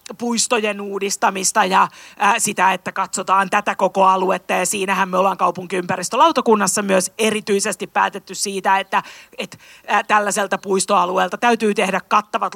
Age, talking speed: 30-49, 125 wpm